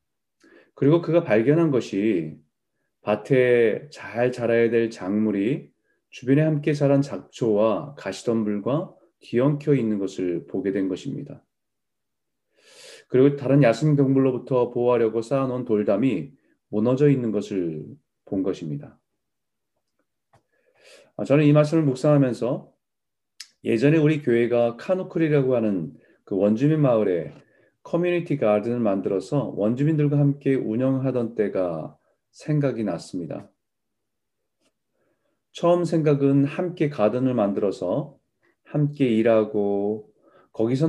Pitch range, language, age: 110-145 Hz, Korean, 30-49